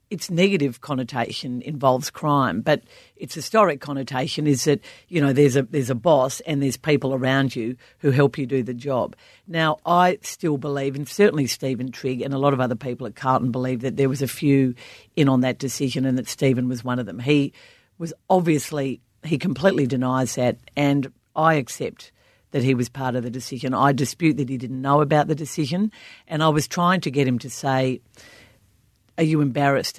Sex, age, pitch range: female, 50-69, 130-155 Hz